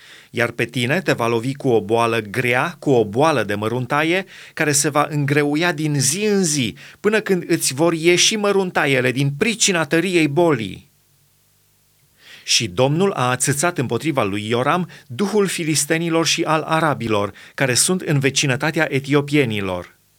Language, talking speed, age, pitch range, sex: Romanian, 150 wpm, 30-49, 130-170 Hz, male